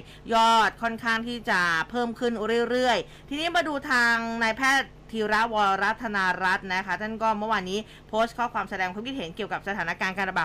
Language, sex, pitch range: Thai, female, 185-230 Hz